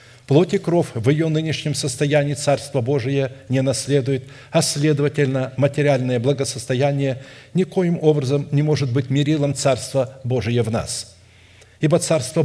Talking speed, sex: 130 wpm, male